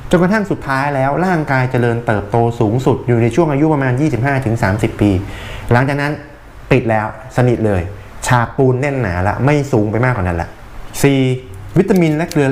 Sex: male